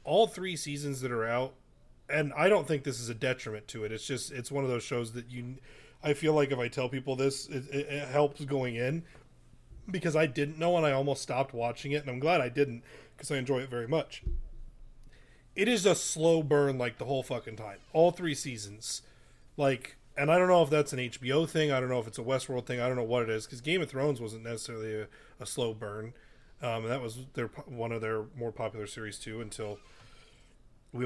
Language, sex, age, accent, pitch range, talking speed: English, male, 30-49, American, 120-155 Hz, 235 wpm